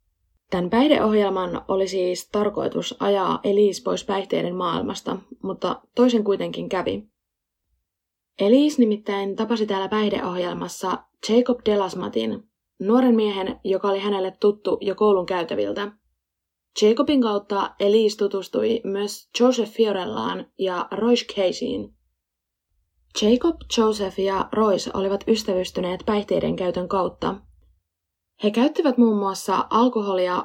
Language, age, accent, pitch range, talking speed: Finnish, 20-39, native, 180-220 Hz, 105 wpm